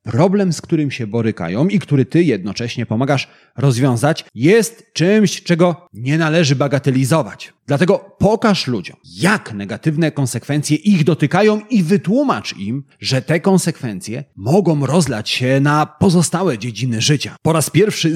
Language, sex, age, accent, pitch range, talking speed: Polish, male, 30-49, native, 130-190 Hz, 135 wpm